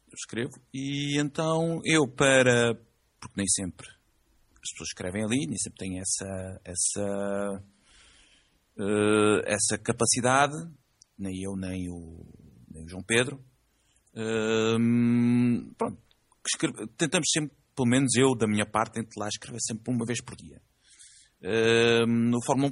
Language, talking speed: English, 130 wpm